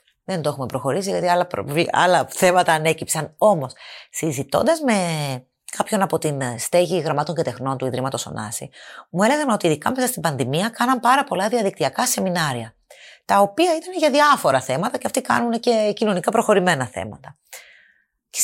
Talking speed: 160 wpm